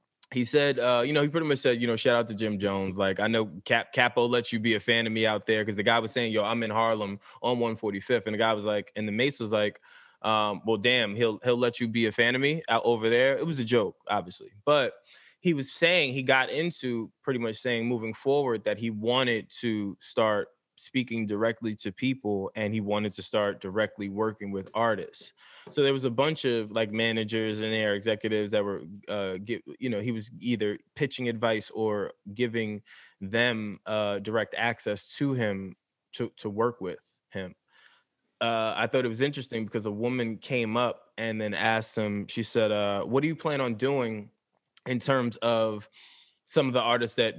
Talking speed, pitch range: 215 wpm, 105-120 Hz